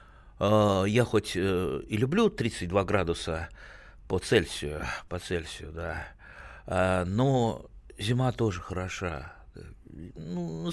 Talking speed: 90 wpm